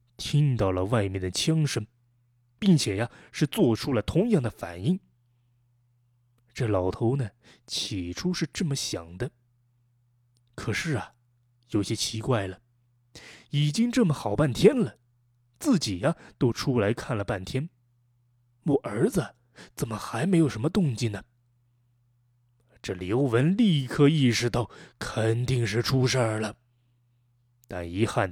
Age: 20-39